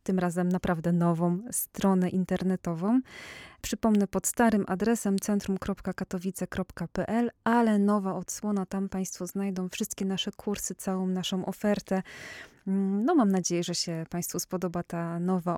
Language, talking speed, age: Polish, 125 wpm, 20-39